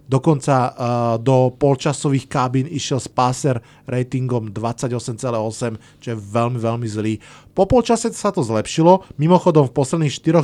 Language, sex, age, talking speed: Slovak, male, 20-39, 130 wpm